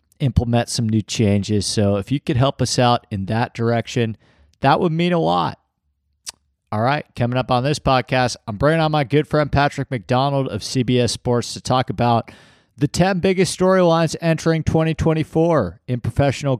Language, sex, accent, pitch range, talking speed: English, male, American, 110-150 Hz, 175 wpm